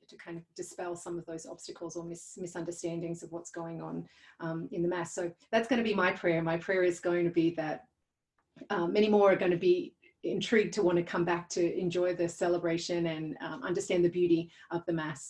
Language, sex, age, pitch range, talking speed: English, female, 30-49, 170-200 Hz, 225 wpm